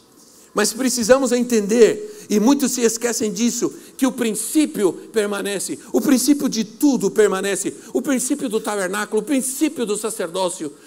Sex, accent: male, Brazilian